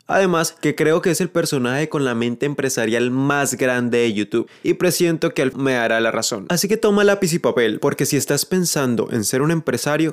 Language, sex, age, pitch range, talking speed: Spanish, male, 20-39, 130-165 Hz, 220 wpm